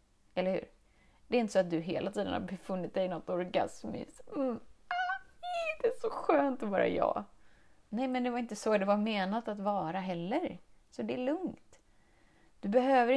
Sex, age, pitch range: female, 30-49, 180-255 Hz